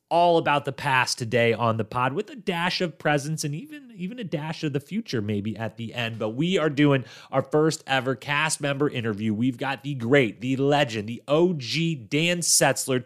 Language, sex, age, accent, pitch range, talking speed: English, male, 30-49, American, 115-150 Hz, 205 wpm